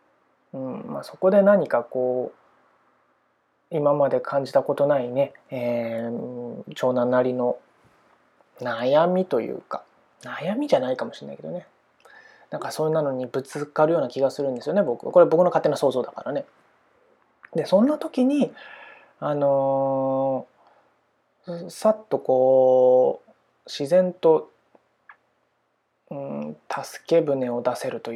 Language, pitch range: Japanese, 125-200 Hz